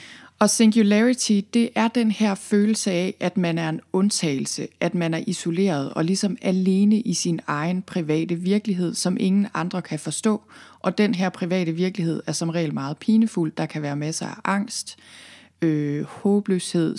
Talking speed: 165 wpm